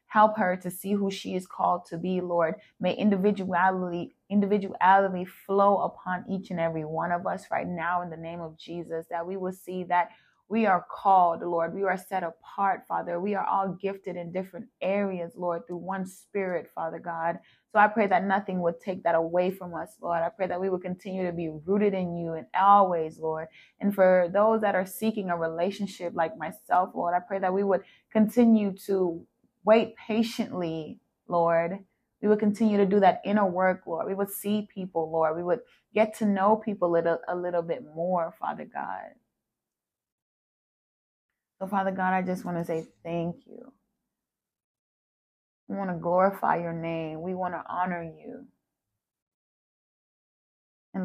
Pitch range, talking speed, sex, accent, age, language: 170-200 Hz, 175 wpm, female, American, 20-39, English